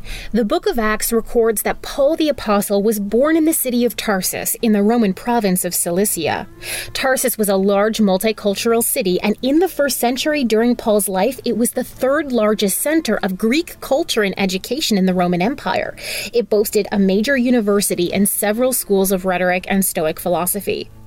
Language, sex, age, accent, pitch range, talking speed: English, female, 30-49, American, 190-240 Hz, 180 wpm